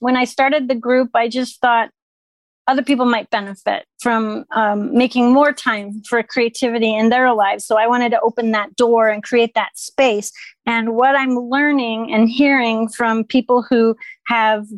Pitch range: 230-260 Hz